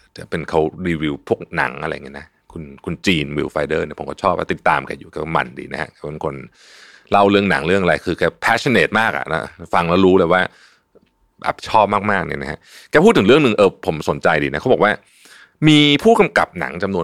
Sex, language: male, Thai